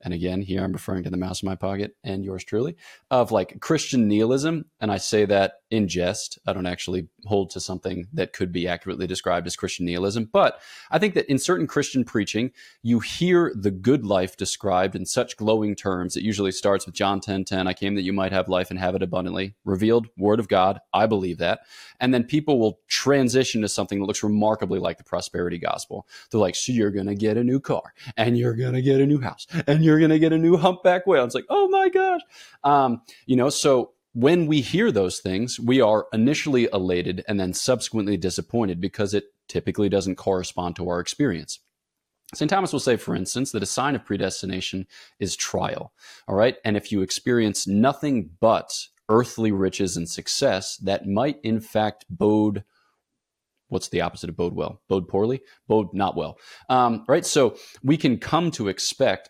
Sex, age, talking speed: male, 20-39, 205 wpm